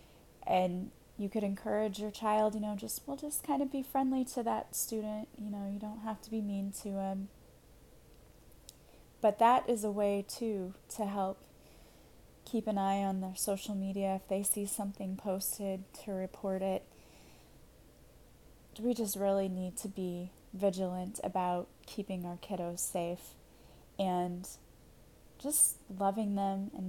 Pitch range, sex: 185-210 Hz, female